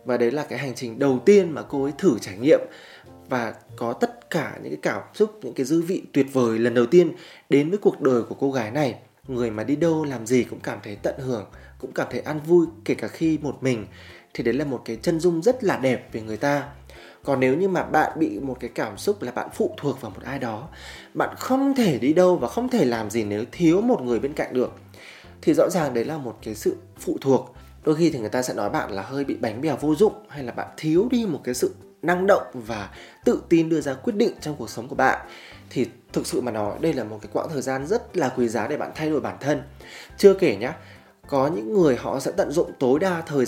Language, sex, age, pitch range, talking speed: Vietnamese, male, 20-39, 115-165 Hz, 260 wpm